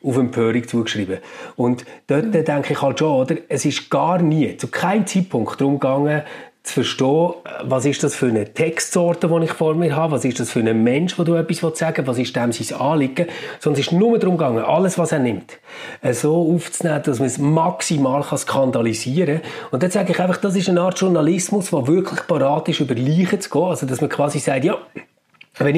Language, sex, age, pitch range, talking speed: German, male, 30-49, 135-170 Hz, 210 wpm